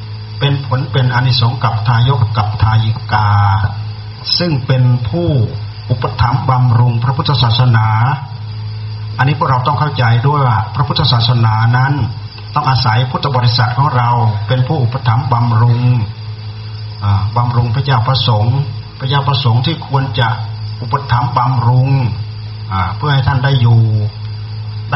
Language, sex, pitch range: Thai, male, 110-130 Hz